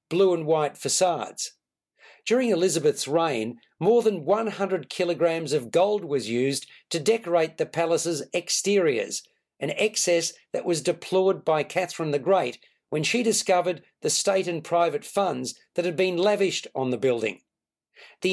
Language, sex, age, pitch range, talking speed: English, male, 50-69, 160-195 Hz, 145 wpm